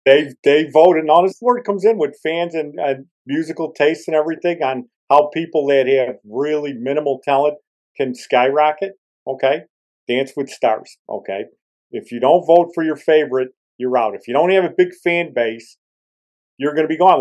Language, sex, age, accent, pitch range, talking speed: English, male, 50-69, American, 125-160 Hz, 180 wpm